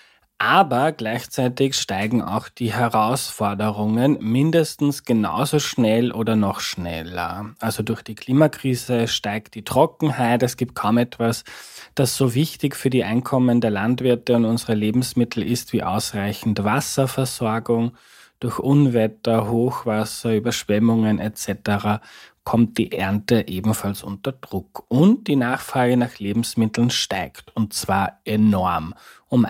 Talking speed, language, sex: 120 wpm, German, male